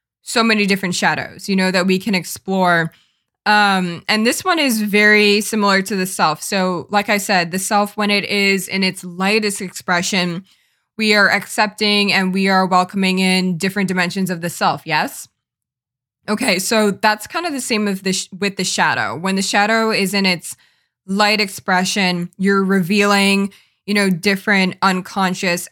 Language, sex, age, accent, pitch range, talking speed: English, female, 20-39, American, 180-205 Hz, 175 wpm